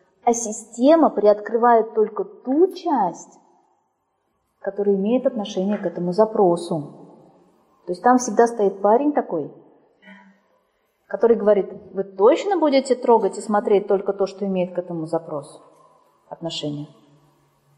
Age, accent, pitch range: 30-49, native, 175-230 Hz